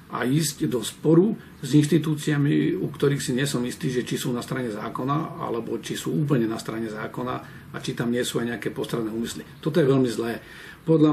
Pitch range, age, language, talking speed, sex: 125-155 Hz, 40-59, Slovak, 210 wpm, male